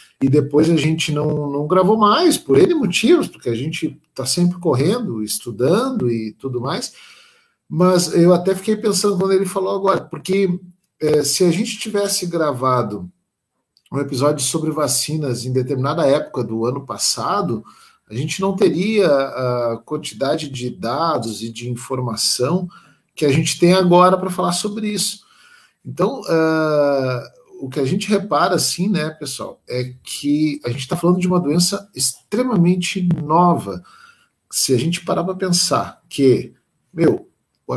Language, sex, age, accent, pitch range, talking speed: Portuguese, male, 50-69, Brazilian, 130-180 Hz, 155 wpm